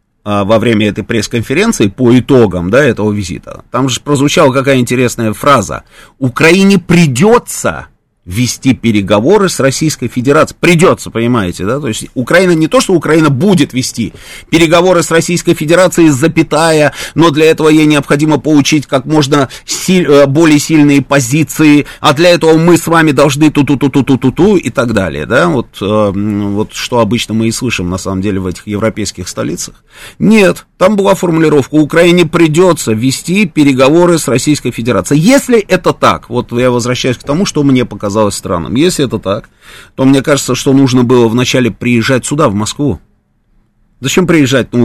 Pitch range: 120-170 Hz